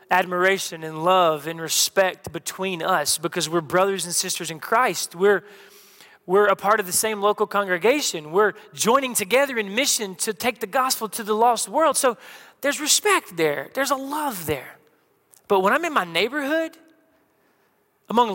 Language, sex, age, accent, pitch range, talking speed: English, male, 30-49, American, 170-225 Hz, 165 wpm